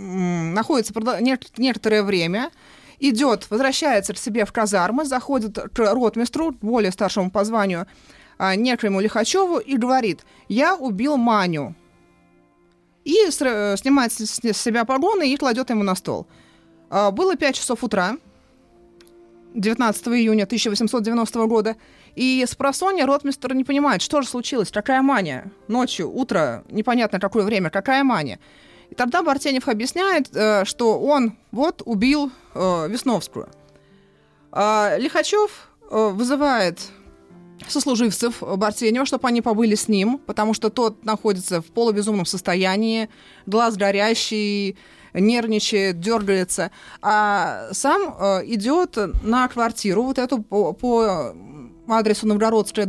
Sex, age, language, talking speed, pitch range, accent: female, 30-49, Russian, 110 wpm, 200-255 Hz, native